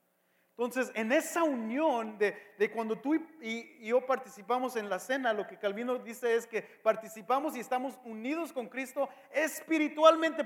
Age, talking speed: 40-59, 160 wpm